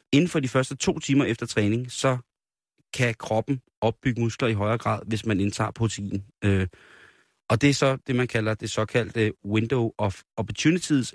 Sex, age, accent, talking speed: male, 30-49, native, 180 wpm